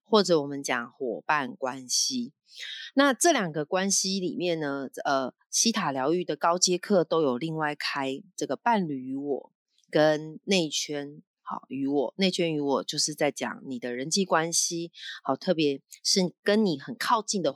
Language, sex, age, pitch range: Chinese, female, 30-49, 150-210 Hz